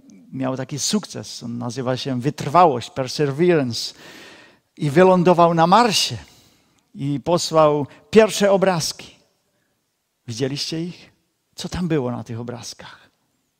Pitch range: 125-170 Hz